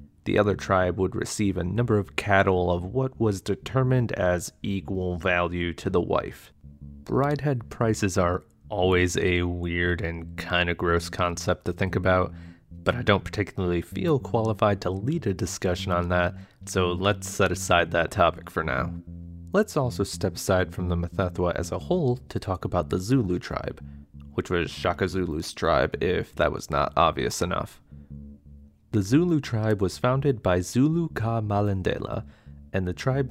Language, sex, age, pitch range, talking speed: English, male, 30-49, 85-105 Hz, 165 wpm